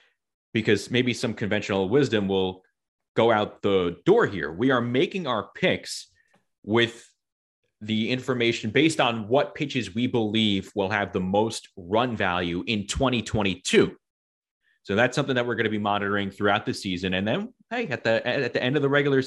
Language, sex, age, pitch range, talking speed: English, male, 30-49, 100-130 Hz, 175 wpm